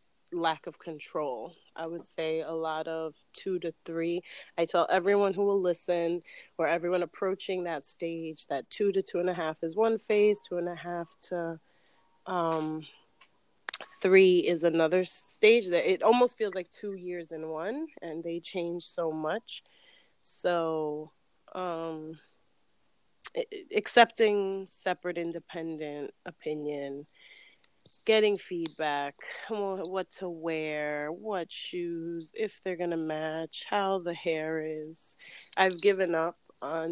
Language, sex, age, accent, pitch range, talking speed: English, female, 30-49, American, 160-190 Hz, 135 wpm